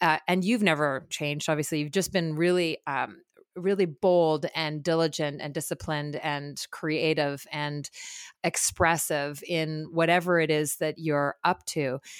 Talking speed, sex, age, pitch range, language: 145 wpm, female, 30-49, 155-185 Hz, English